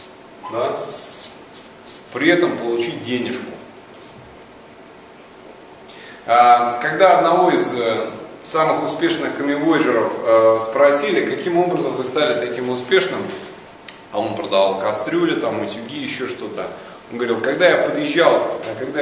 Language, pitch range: Russian, 125-185 Hz